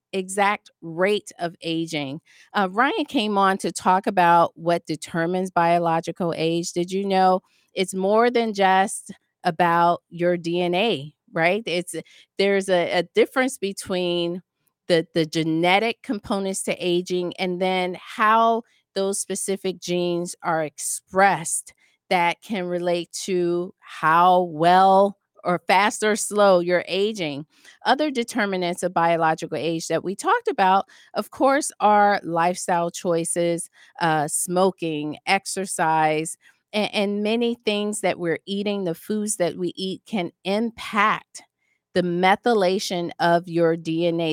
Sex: female